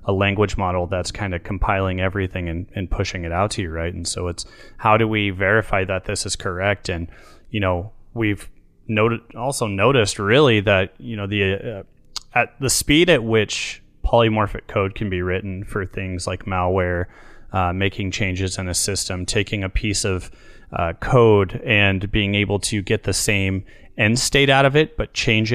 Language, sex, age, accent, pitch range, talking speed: English, male, 30-49, American, 95-110 Hz, 190 wpm